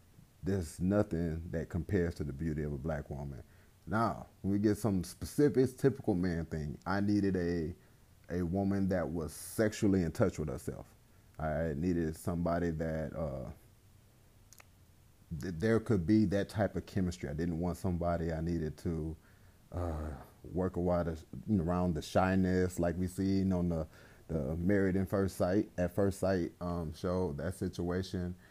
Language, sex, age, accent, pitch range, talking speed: English, male, 30-49, American, 85-105 Hz, 160 wpm